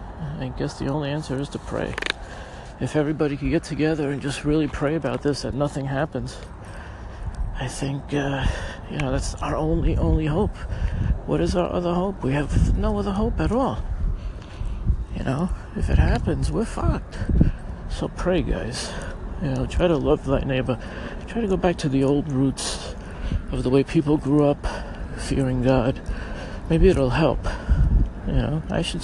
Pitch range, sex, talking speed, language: 110-150 Hz, male, 175 wpm, English